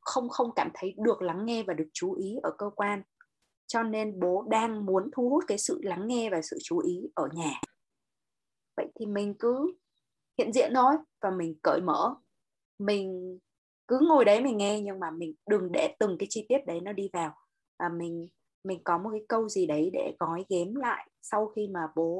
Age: 20-39